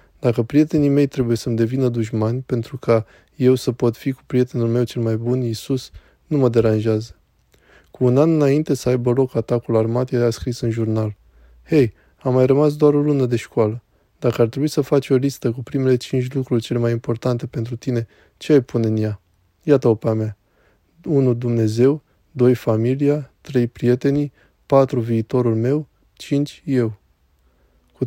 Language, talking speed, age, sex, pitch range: Romanian, 175 wpm, 20-39, male, 115-130 Hz